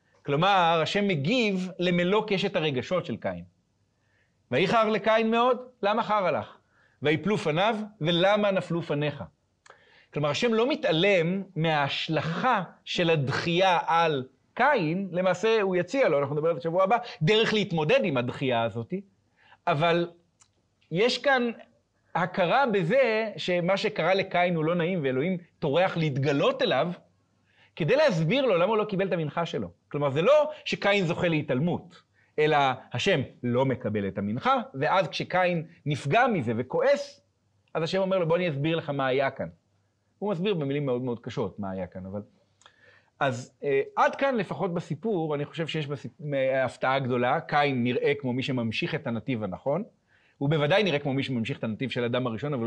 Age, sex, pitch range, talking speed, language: 40-59, male, 130-195 Hz, 155 wpm, Hebrew